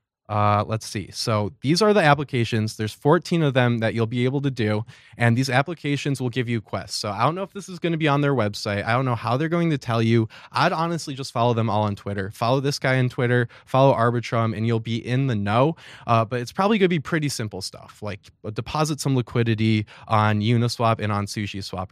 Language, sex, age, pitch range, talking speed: English, male, 20-39, 110-140 Hz, 240 wpm